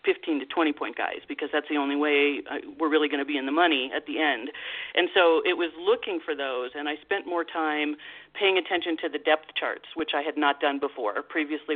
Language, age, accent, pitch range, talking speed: English, 40-59, American, 145-170 Hz, 225 wpm